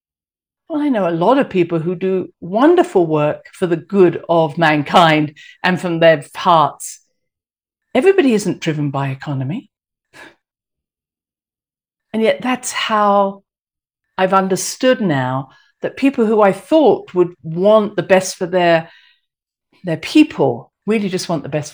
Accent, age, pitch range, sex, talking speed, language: British, 50-69, 160-215 Hz, female, 140 wpm, English